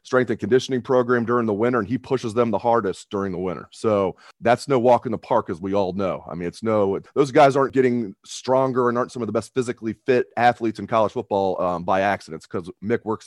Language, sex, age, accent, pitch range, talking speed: English, male, 30-49, American, 100-130 Hz, 245 wpm